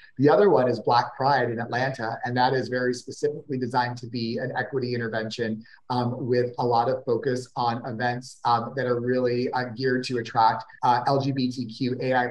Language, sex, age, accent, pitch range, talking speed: English, male, 30-49, American, 120-135 Hz, 180 wpm